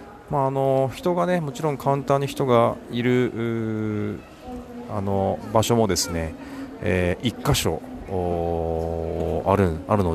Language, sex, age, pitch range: Japanese, male, 40-59, 90-110 Hz